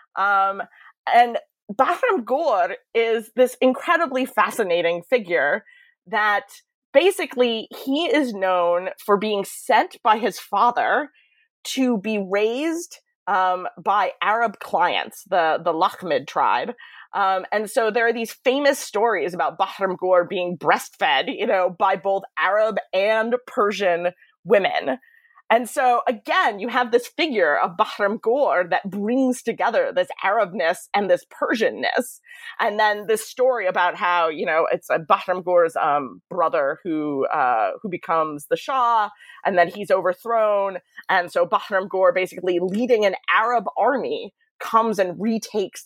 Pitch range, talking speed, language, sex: 185-255 Hz, 135 wpm, English, female